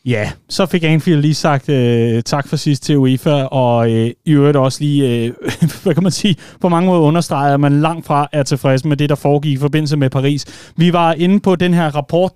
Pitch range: 140-180 Hz